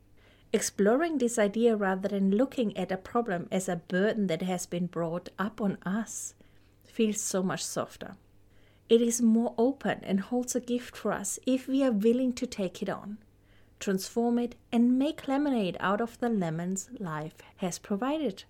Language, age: English, 30-49